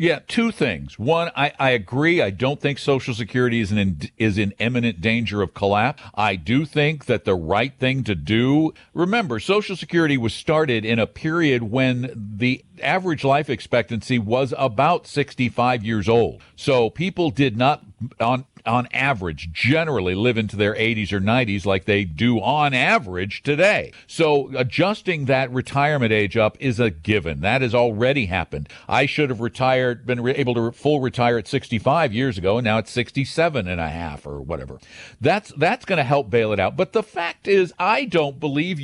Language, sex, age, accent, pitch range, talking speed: English, male, 50-69, American, 110-155 Hz, 180 wpm